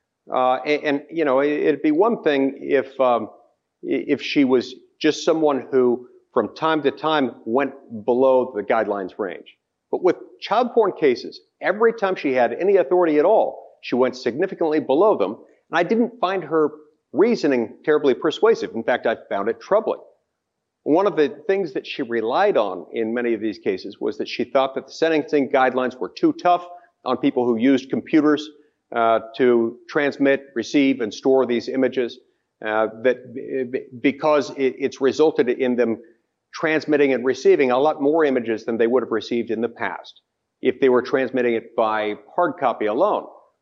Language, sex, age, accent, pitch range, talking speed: English, male, 50-69, American, 125-185 Hz, 175 wpm